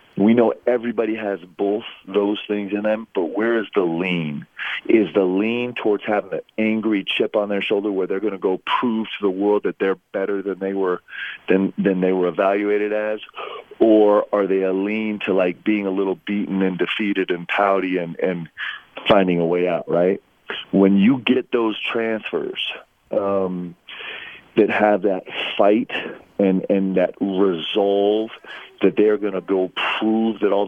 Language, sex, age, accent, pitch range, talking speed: English, male, 40-59, American, 95-110 Hz, 175 wpm